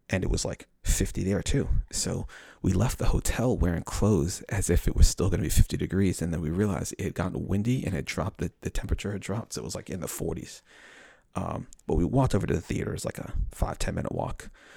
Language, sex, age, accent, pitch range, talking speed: English, male, 30-49, American, 85-105 Hz, 240 wpm